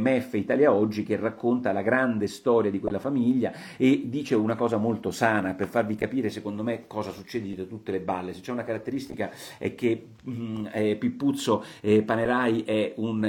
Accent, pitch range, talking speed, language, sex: native, 100-125 Hz, 180 wpm, Italian, male